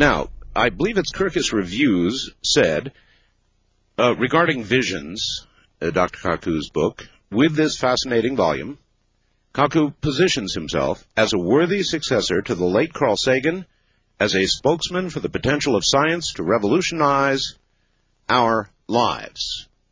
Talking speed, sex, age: 125 wpm, male, 50-69